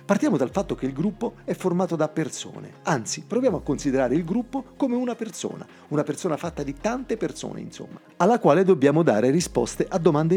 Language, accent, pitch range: Italian, native, 115-185 Hz